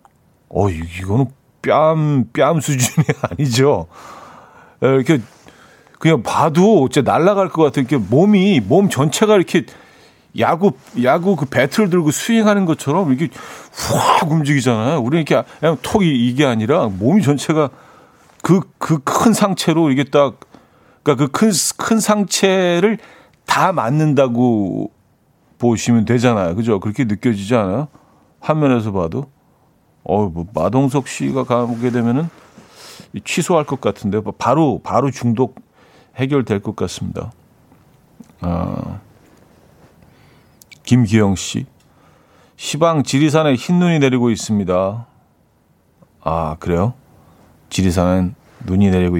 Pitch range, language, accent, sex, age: 110-160 Hz, Korean, native, male, 40-59